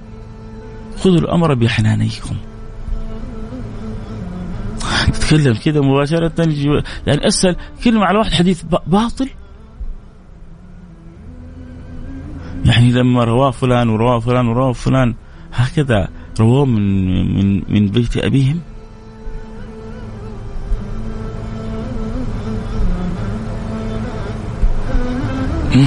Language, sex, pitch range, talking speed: English, male, 100-165 Hz, 70 wpm